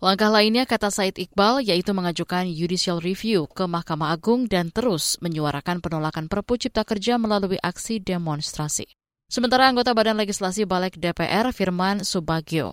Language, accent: Indonesian, native